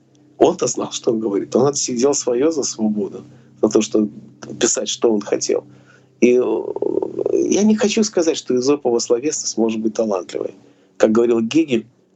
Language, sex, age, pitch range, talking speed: Russian, male, 40-59, 115-175 Hz, 155 wpm